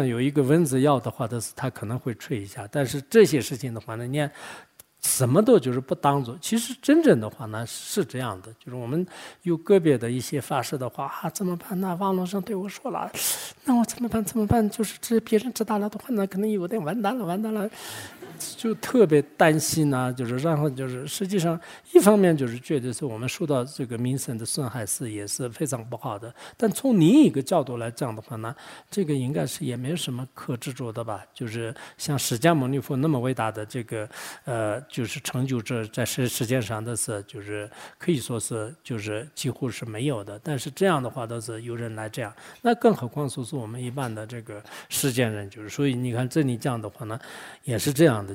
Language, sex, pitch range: English, male, 115-155 Hz